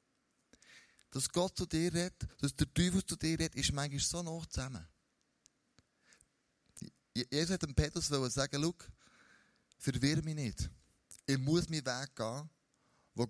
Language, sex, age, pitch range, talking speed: German, male, 20-39, 120-160 Hz, 140 wpm